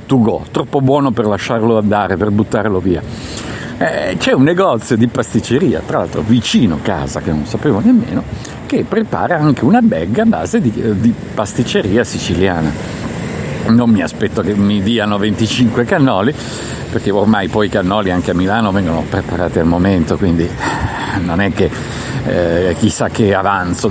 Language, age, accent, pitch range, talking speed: Italian, 50-69, native, 100-160 Hz, 155 wpm